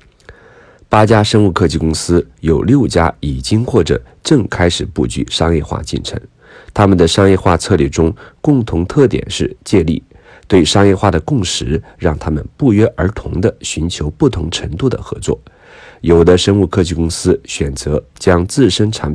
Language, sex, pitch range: Chinese, male, 80-110 Hz